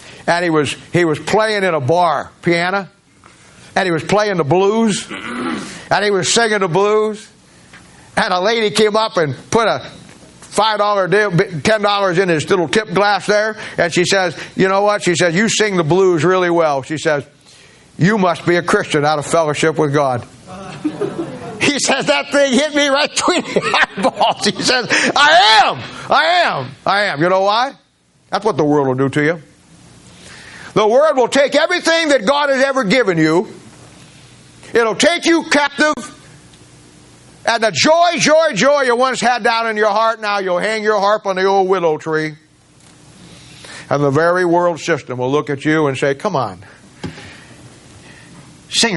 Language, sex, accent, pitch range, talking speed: English, male, American, 150-220 Hz, 180 wpm